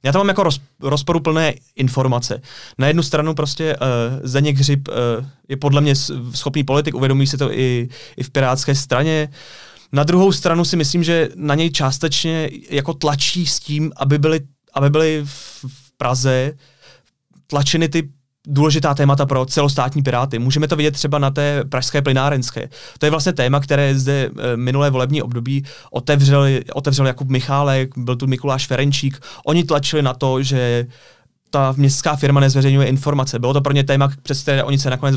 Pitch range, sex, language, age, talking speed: 130-150 Hz, male, Czech, 20-39, 160 wpm